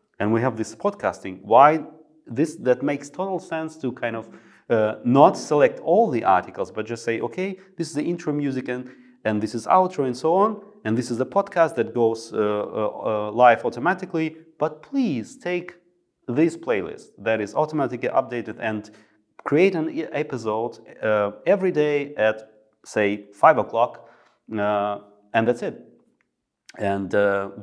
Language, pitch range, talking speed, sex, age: English, 100-150 Hz, 165 wpm, male, 30-49